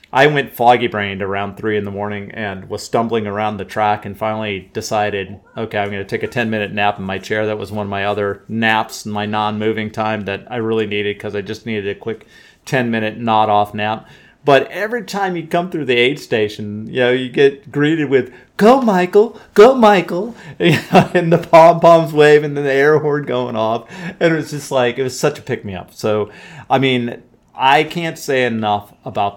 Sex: male